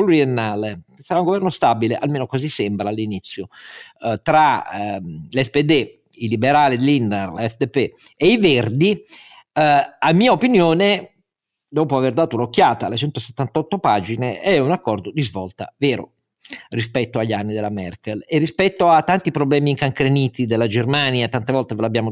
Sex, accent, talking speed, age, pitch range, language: male, native, 145 wpm, 50-69, 115-155 Hz, Italian